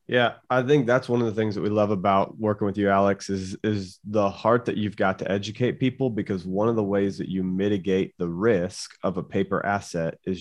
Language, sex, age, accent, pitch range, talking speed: English, male, 30-49, American, 100-120 Hz, 235 wpm